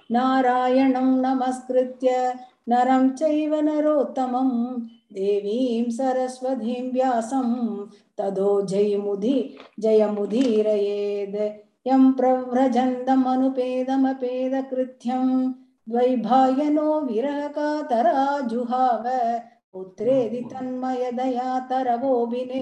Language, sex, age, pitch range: Tamil, female, 50-69, 215-260 Hz